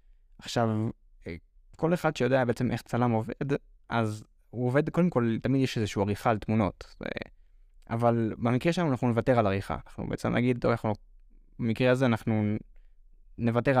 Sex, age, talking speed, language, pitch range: male, 20-39, 145 wpm, Hebrew, 105-130 Hz